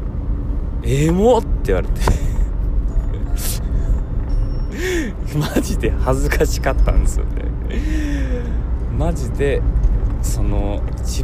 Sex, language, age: male, Japanese, 20-39